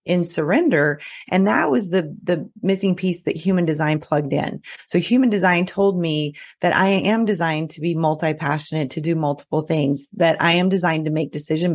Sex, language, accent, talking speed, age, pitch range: female, English, American, 195 wpm, 30-49, 155-185 Hz